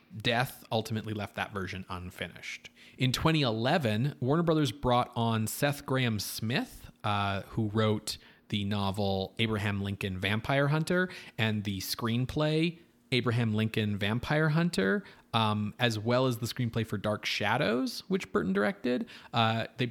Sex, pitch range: male, 105-140 Hz